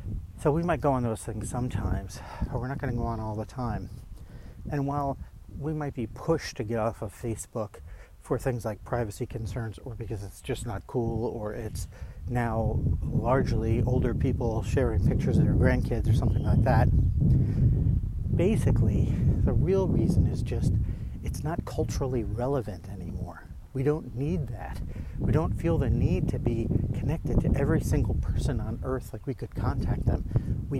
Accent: American